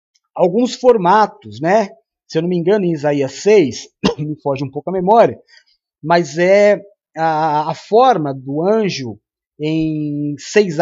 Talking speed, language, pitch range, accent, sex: 145 wpm, Portuguese, 155-220 Hz, Brazilian, male